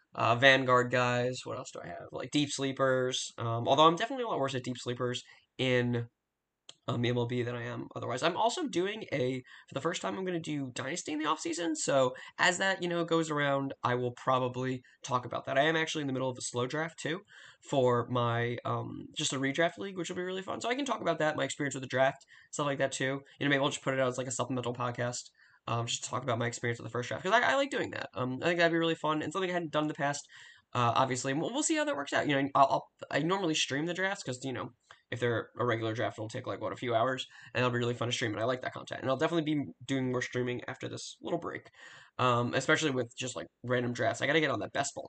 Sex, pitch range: male, 125-155 Hz